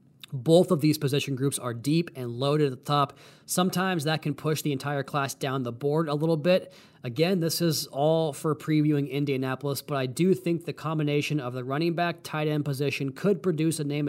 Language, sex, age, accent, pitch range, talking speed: English, male, 30-49, American, 135-165 Hz, 210 wpm